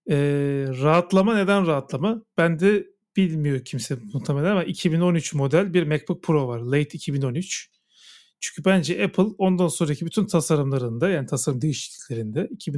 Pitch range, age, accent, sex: 145-190 Hz, 40-59, native, male